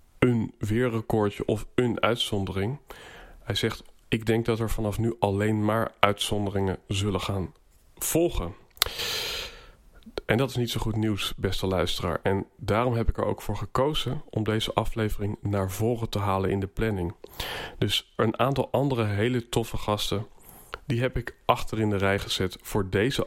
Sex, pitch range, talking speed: male, 100-120 Hz, 160 wpm